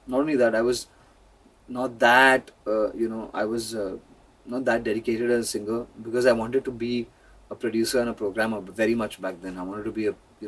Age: 20-39